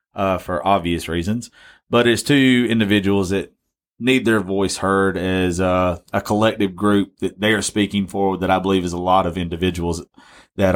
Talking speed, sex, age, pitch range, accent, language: 180 wpm, male, 30-49, 95-120 Hz, American, English